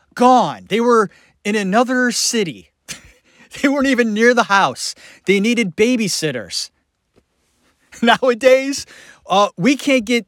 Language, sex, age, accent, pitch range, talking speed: English, male, 30-49, American, 150-220 Hz, 115 wpm